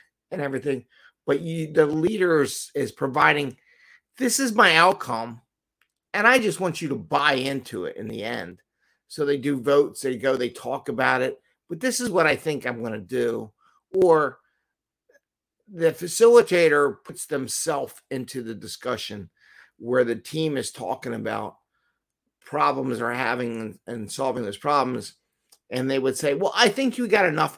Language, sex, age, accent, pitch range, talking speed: English, male, 50-69, American, 120-175 Hz, 160 wpm